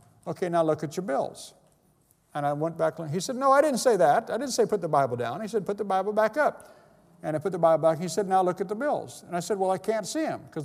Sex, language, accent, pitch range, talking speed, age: male, English, American, 140-200 Hz, 300 wpm, 50-69